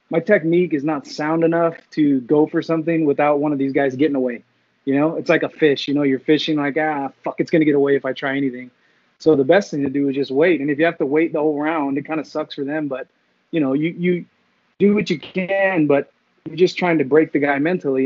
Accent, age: American, 20-39